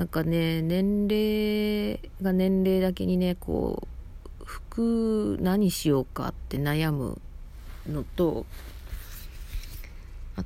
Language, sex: Japanese, female